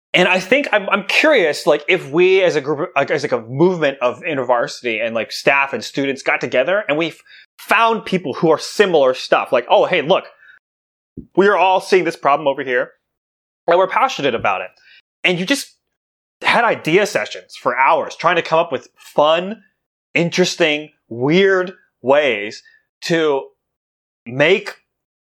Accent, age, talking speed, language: American, 30-49, 160 wpm, English